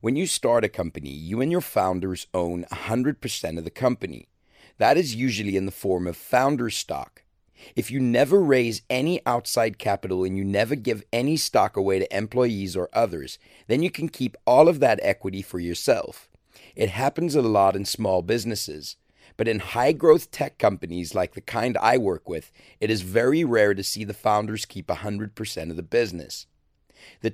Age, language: 40-59, English